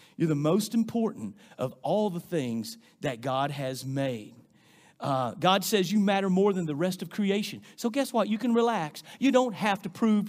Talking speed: 200 wpm